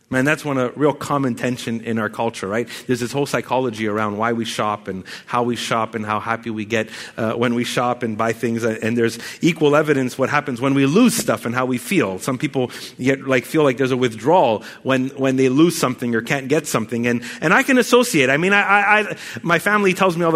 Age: 30-49